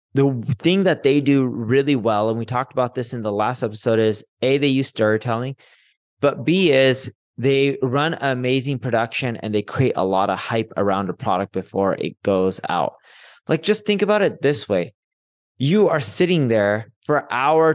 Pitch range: 110-145 Hz